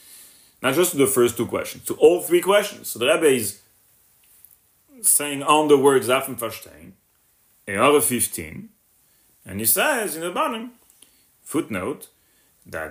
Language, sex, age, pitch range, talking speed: English, male, 40-59, 130-220 Hz, 150 wpm